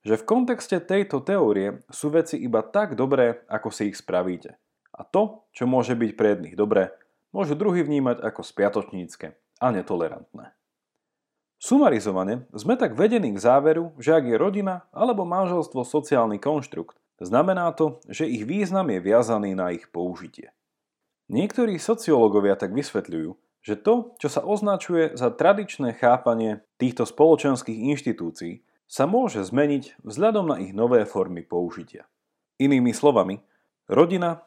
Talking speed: 140 wpm